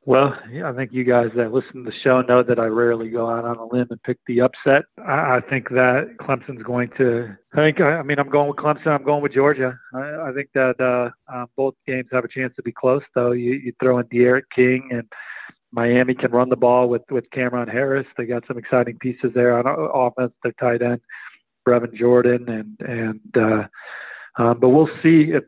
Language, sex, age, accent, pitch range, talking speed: English, male, 40-59, American, 120-135 Hz, 220 wpm